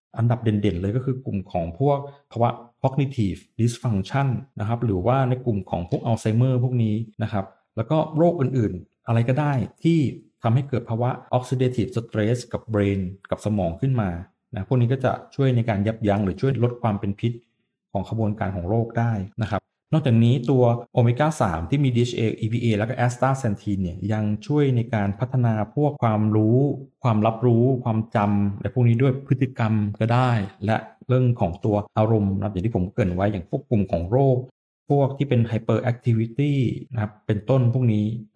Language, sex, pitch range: Thai, male, 105-130 Hz